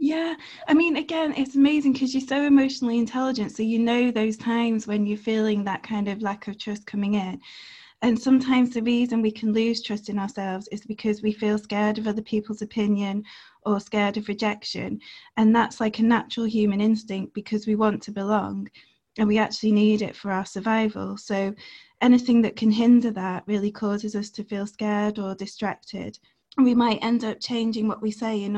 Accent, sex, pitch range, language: British, female, 205-230 Hz, English